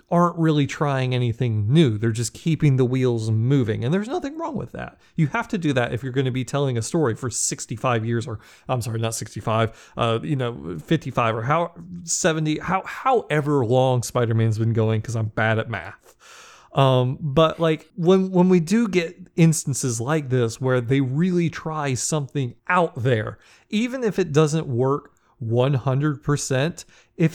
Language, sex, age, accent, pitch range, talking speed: English, male, 30-49, American, 125-165 Hz, 180 wpm